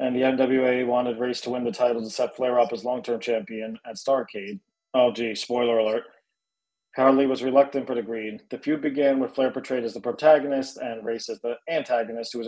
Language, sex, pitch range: English, male, 120-145 Hz